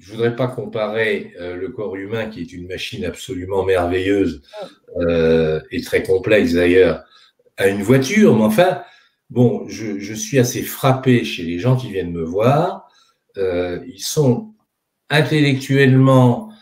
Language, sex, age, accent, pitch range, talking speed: French, male, 50-69, French, 100-155 Hz, 145 wpm